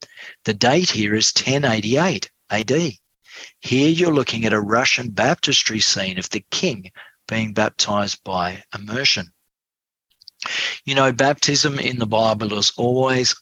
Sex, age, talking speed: male, 50-69, 130 wpm